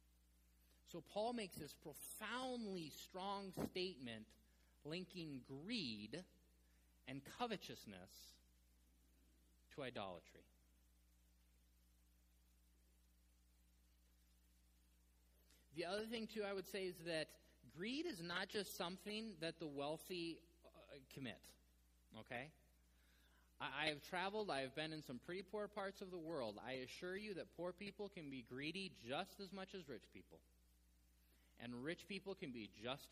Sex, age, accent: male, 30-49, American